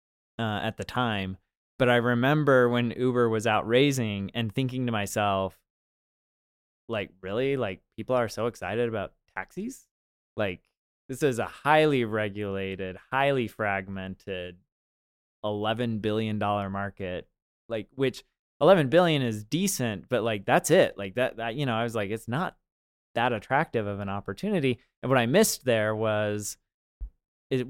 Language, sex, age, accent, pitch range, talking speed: English, male, 20-39, American, 100-125 Hz, 150 wpm